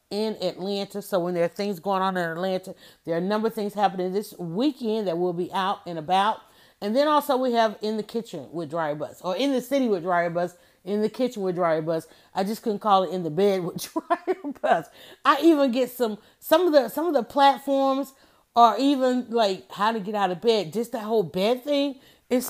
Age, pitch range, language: 30-49, 185-255 Hz, English